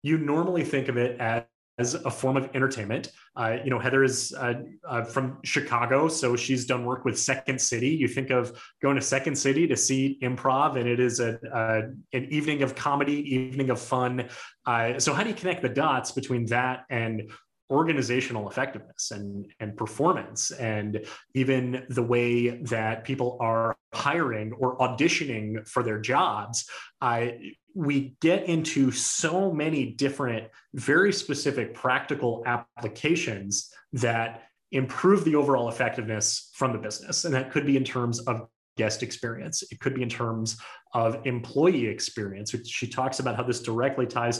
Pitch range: 115-140 Hz